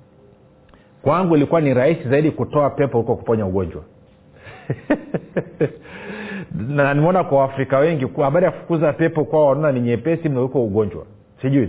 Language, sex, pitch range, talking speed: Swahili, male, 115-155 Hz, 135 wpm